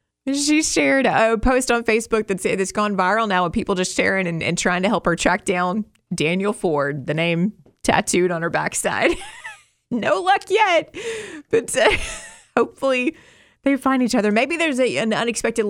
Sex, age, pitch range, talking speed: female, 30-49, 185-260 Hz, 180 wpm